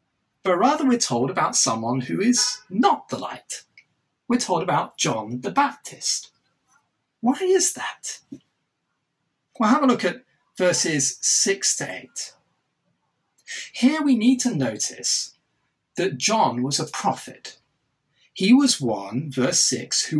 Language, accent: English, British